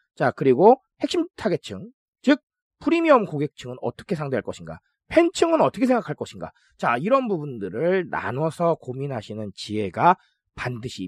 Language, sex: Korean, male